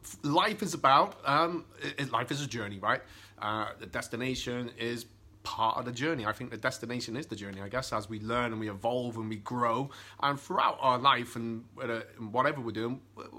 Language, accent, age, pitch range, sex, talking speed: English, British, 30-49, 105-130 Hz, male, 200 wpm